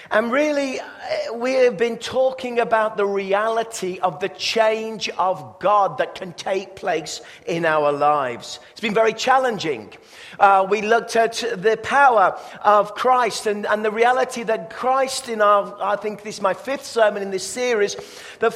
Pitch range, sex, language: 195-235 Hz, male, English